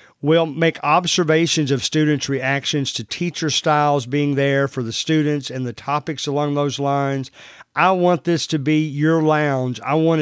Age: 50-69